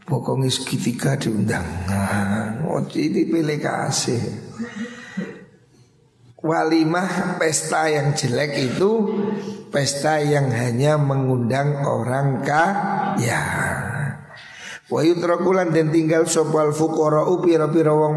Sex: male